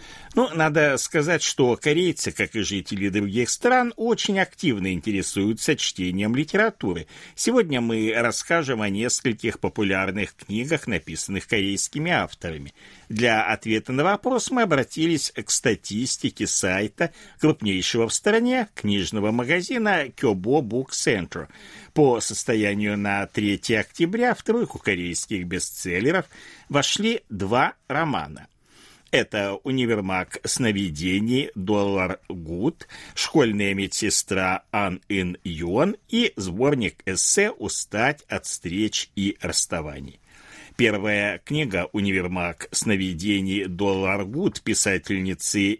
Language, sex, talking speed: Russian, male, 100 wpm